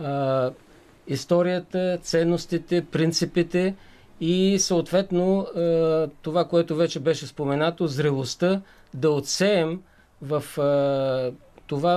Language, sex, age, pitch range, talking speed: Bulgarian, male, 50-69, 150-185 Hz, 75 wpm